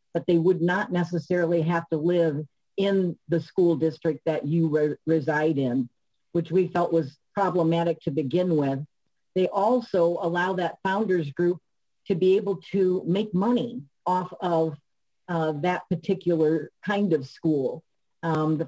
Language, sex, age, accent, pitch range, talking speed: English, female, 50-69, American, 160-180 Hz, 150 wpm